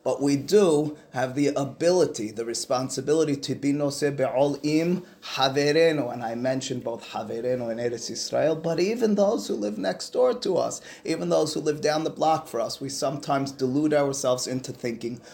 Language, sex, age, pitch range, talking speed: English, male, 30-49, 115-145 Hz, 180 wpm